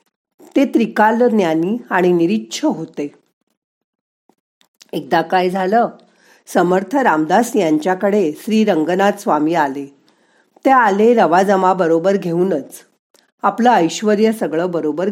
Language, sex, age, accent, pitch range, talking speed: Marathi, female, 40-59, native, 165-220 Hz, 105 wpm